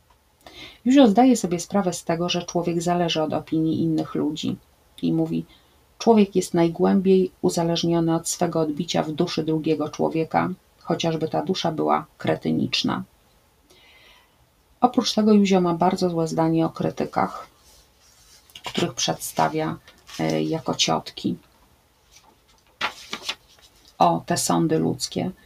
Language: Polish